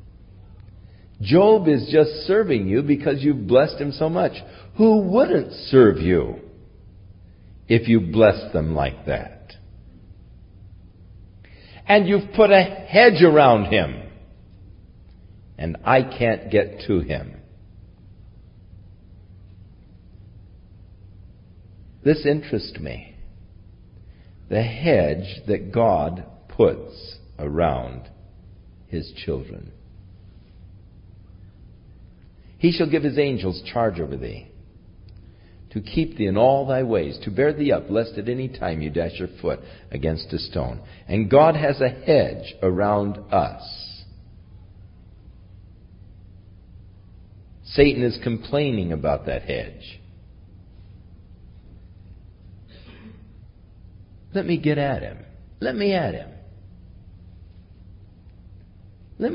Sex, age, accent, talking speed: male, 60-79, American, 100 wpm